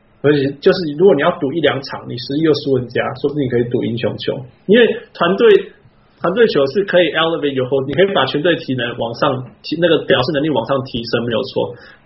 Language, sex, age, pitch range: Chinese, male, 20-39, 135-185 Hz